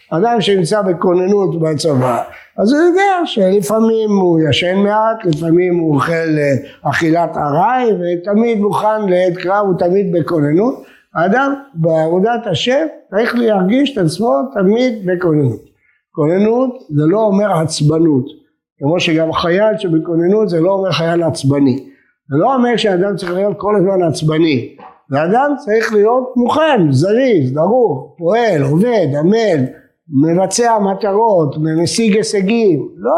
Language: Hebrew